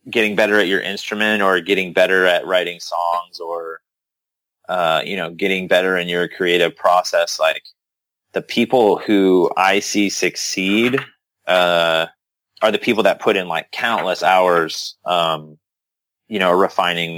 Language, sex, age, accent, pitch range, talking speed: English, male, 30-49, American, 85-100 Hz, 145 wpm